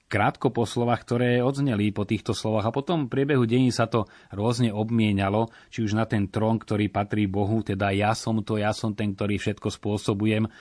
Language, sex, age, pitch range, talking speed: Slovak, male, 30-49, 95-110 Hz, 200 wpm